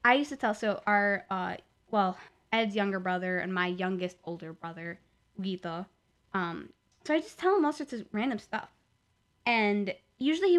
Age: 10-29